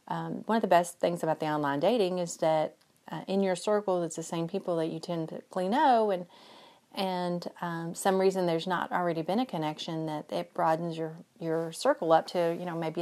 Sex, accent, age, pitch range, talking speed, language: female, American, 30-49, 155-185 Hz, 215 wpm, English